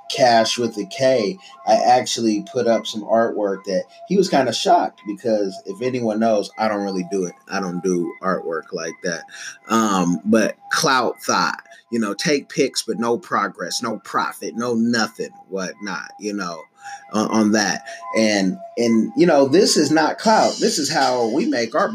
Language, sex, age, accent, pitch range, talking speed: English, male, 30-49, American, 105-135 Hz, 180 wpm